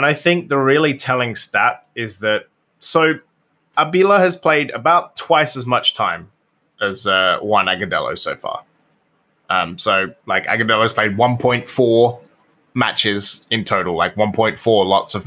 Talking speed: 150 wpm